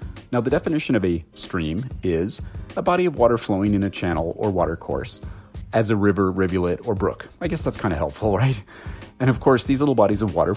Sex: male